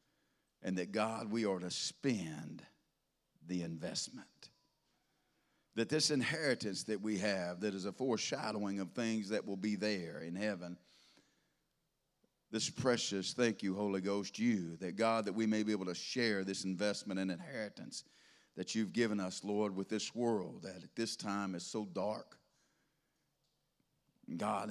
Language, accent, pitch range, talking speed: English, American, 95-120 Hz, 155 wpm